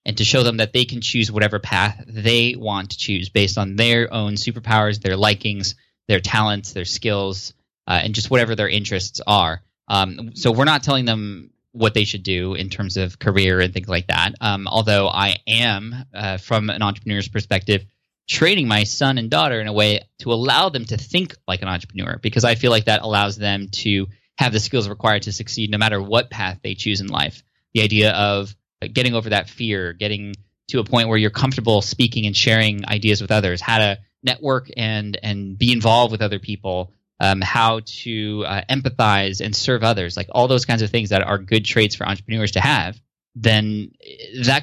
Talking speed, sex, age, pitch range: 205 wpm, male, 10-29, 100-120 Hz